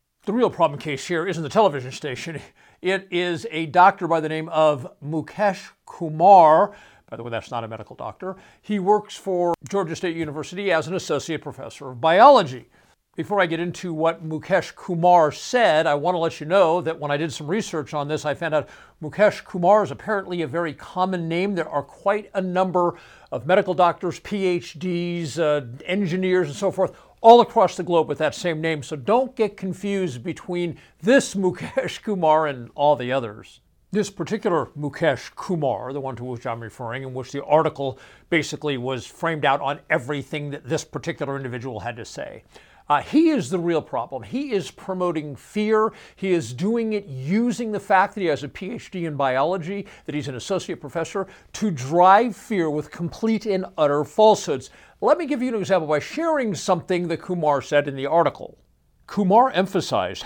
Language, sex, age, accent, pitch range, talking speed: English, male, 50-69, American, 150-195 Hz, 185 wpm